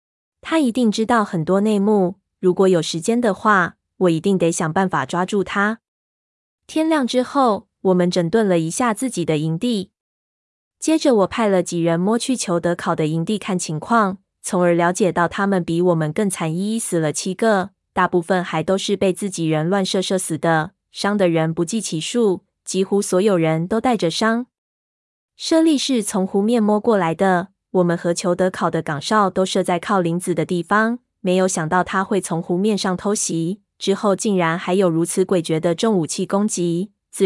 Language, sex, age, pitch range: Chinese, female, 20-39, 175-215 Hz